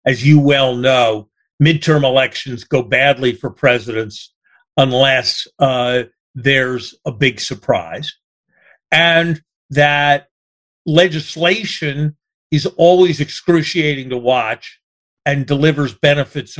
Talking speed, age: 100 wpm, 50-69